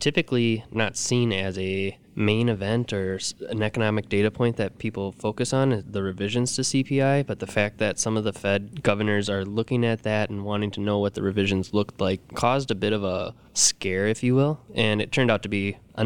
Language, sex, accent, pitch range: English, male, American, 100-115 Hz